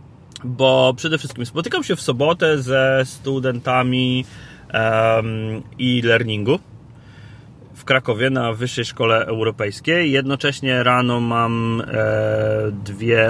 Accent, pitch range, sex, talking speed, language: native, 115-140 Hz, male, 90 wpm, Polish